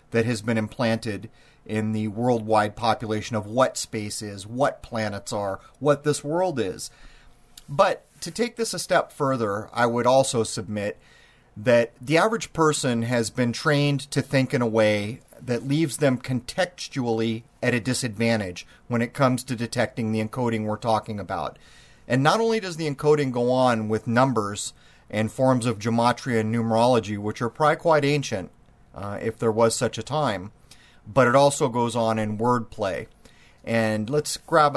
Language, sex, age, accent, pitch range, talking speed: English, male, 30-49, American, 110-135 Hz, 165 wpm